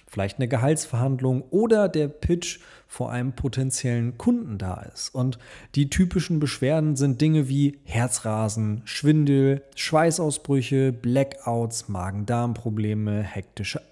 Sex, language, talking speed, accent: male, German, 110 wpm, German